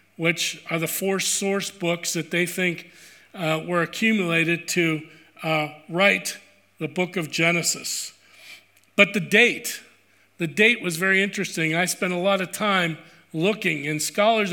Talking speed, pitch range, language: 150 wpm, 170-205 Hz, English